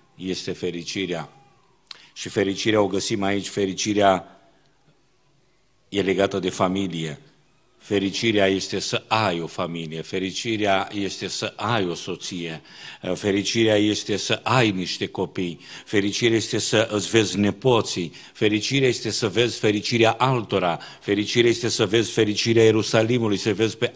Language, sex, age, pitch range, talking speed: Romanian, male, 50-69, 100-125 Hz, 130 wpm